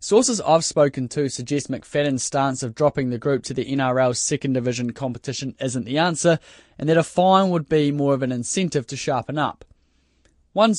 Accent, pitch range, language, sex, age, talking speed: Australian, 130-160 Hz, English, male, 10-29, 190 wpm